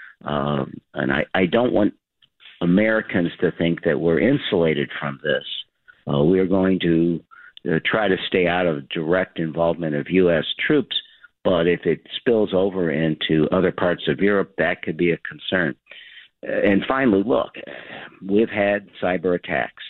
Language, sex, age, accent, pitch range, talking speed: English, male, 50-69, American, 80-95 Hz, 155 wpm